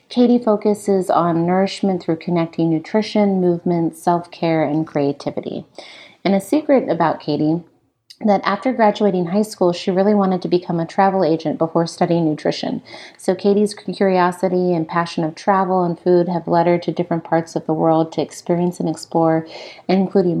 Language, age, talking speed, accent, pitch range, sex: English, 30-49, 160 wpm, American, 165-190 Hz, female